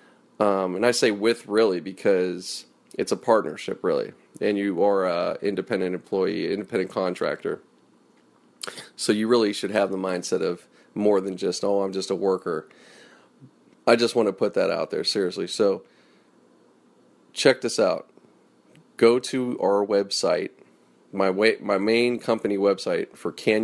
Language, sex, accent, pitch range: English, male, American, 95-115 Hz